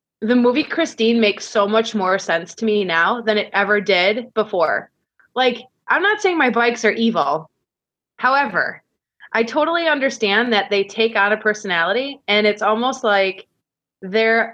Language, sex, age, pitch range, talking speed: English, female, 20-39, 205-245 Hz, 160 wpm